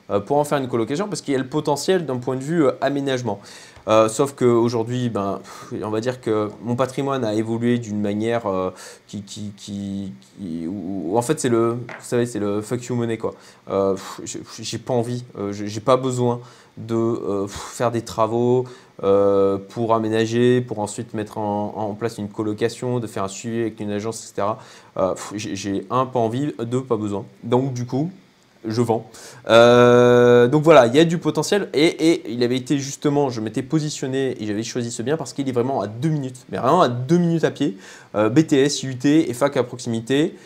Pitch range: 105-130 Hz